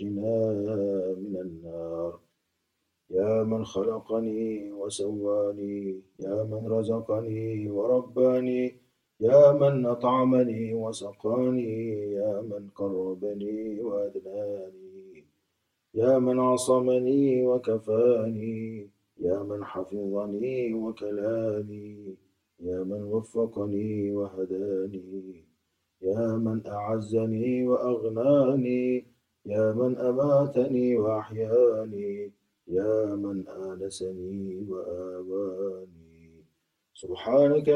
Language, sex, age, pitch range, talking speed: Turkish, male, 30-49, 100-125 Hz, 70 wpm